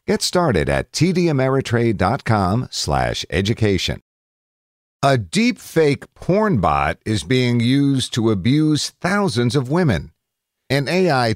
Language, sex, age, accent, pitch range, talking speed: English, male, 50-69, American, 95-135 Hz, 100 wpm